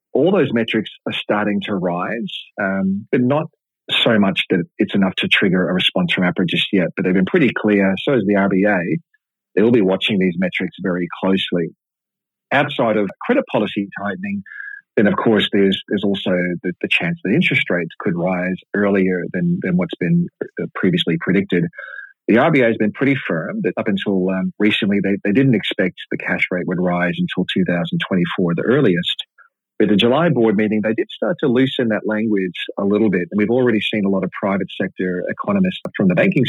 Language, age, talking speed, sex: English, 40-59, 190 wpm, male